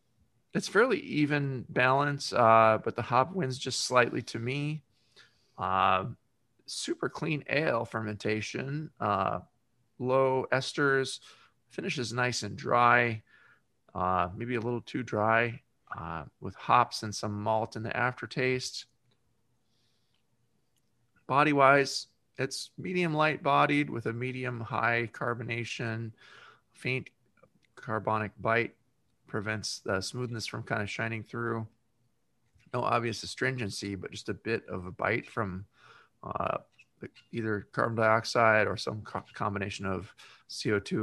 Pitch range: 110-130 Hz